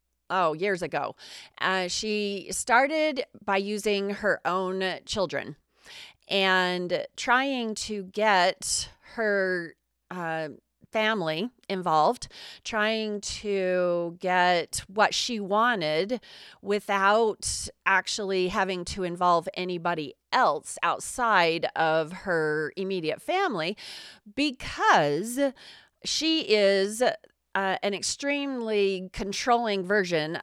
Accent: American